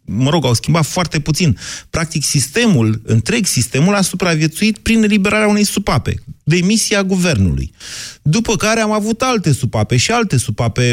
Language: Romanian